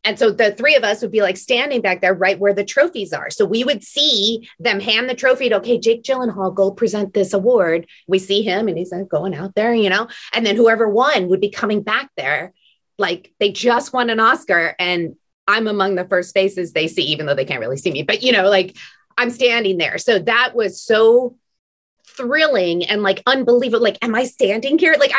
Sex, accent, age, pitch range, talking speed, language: female, American, 30-49, 190-260 Hz, 225 wpm, English